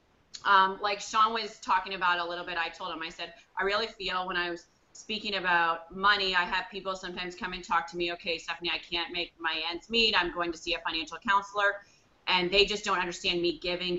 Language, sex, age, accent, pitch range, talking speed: English, female, 30-49, American, 175-210 Hz, 230 wpm